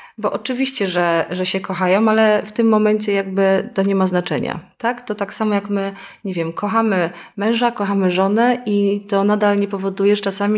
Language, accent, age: Polish, native, 30-49